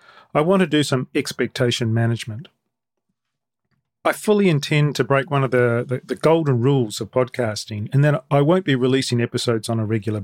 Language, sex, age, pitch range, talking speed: English, male, 40-59, 115-140 Hz, 180 wpm